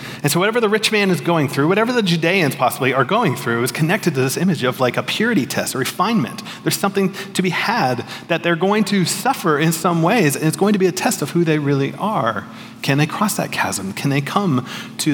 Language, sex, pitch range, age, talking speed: English, male, 120-155 Hz, 30-49, 245 wpm